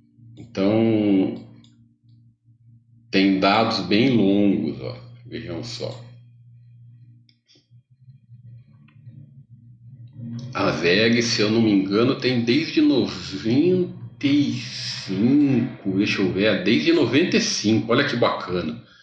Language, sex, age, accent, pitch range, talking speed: Portuguese, male, 40-59, Brazilian, 110-145 Hz, 80 wpm